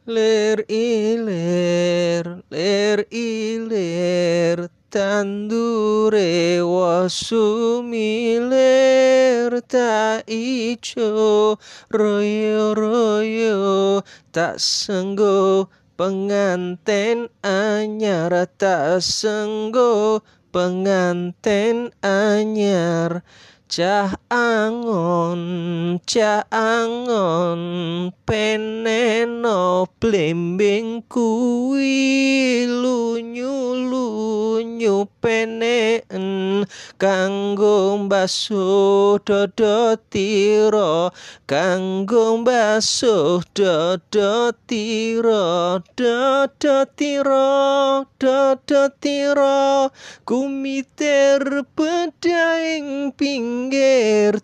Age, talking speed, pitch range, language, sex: 20-39, 45 wpm, 190-235 Hz, Indonesian, male